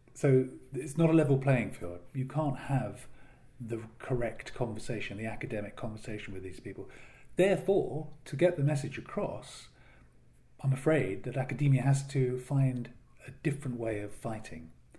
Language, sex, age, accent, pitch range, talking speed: English, male, 40-59, British, 110-135 Hz, 150 wpm